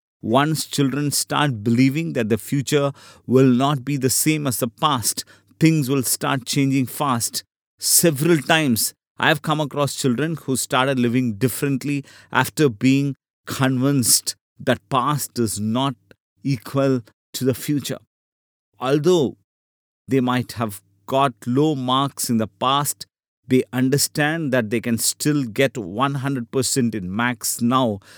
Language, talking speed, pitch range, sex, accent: English, 135 wpm, 110-140 Hz, male, Indian